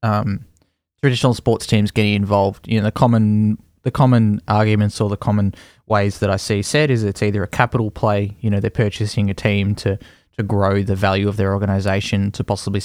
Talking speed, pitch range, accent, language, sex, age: 200 wpm, 105-120 Hz, Australian, English, male, 20-39